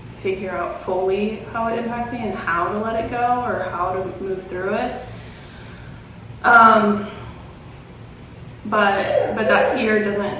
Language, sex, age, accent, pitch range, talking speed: English, female, 20-39, American, 185-215 Hz, 145 wpm